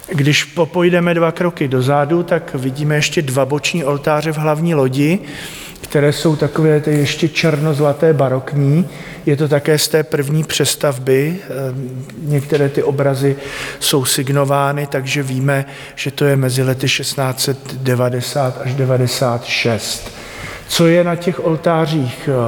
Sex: male